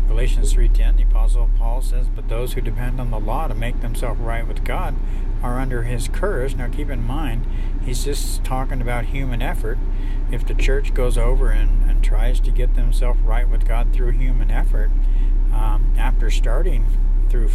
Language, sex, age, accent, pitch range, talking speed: English, male, 60-79, American, 105-120 Hz, 185 wpm